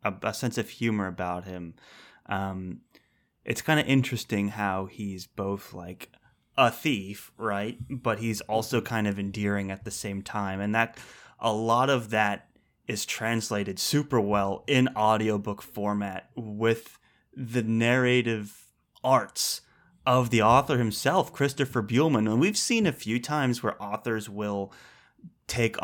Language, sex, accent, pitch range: English, male, American, 105-120 Hz